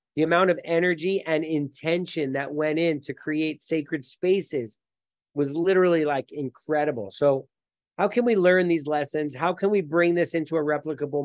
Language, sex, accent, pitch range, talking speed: English, male, American, 140-175 Hz, 170 wpm